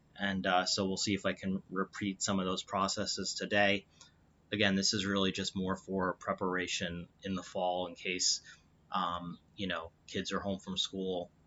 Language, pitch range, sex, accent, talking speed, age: English, 90-95 Hz, male, American, 185 wpm, 30-49